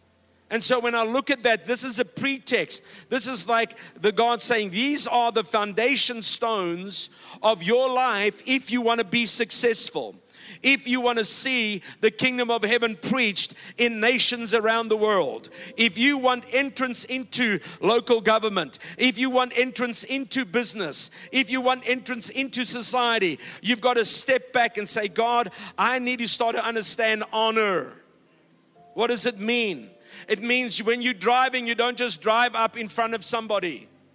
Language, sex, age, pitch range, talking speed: English, male, 50-69, 225-250 Hz, 170 wpm